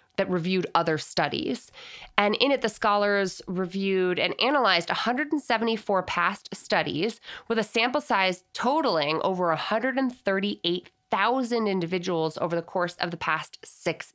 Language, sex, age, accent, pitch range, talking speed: English, female, 20-39, American, 170-250 Hz, 125 wpm